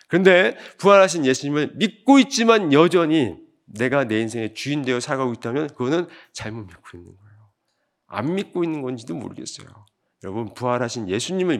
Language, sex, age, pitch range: Korean, male, 40-59, 115-190 Hz